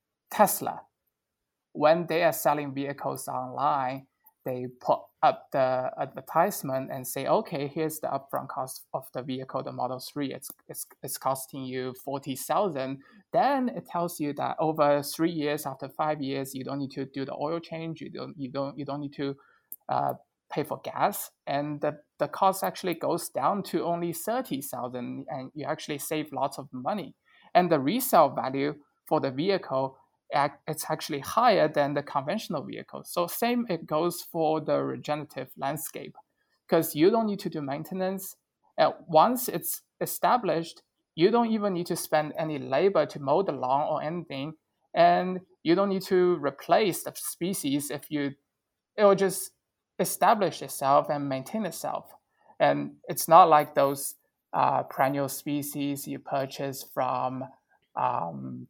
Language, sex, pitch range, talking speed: English, male, 135-170 Hz, 160 wpm